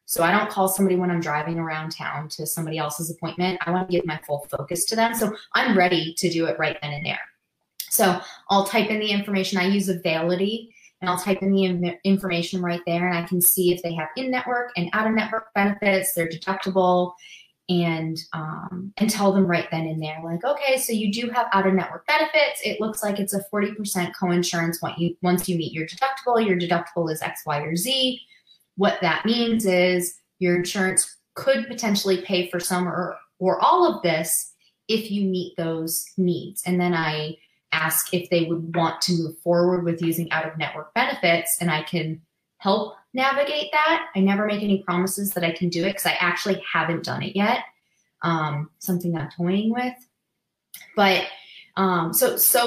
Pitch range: 170-205 Hz